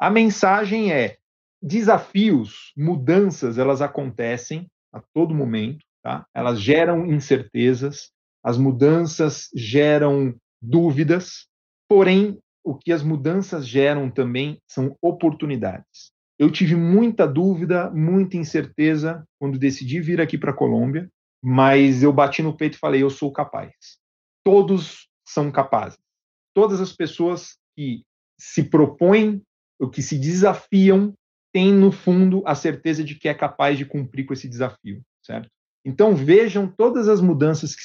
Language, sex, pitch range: Portuguese, male, 135-175 Hz